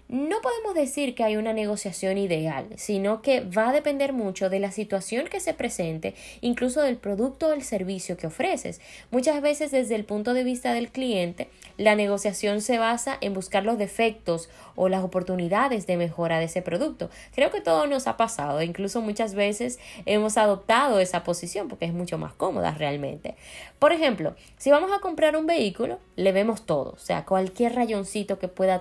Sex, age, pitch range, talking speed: female, 10-29, 190-270 Hz, 185 wpm